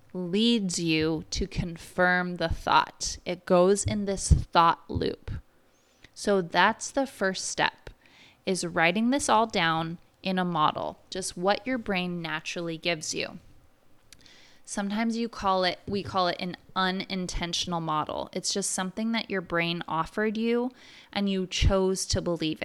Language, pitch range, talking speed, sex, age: English, 170-210 Hz, 145 wpm, female, 20-39